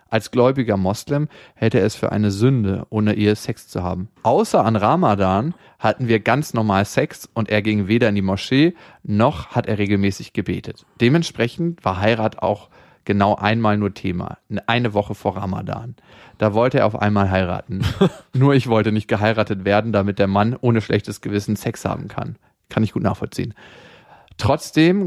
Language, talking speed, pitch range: German, 170 wpm, 105-120 Hz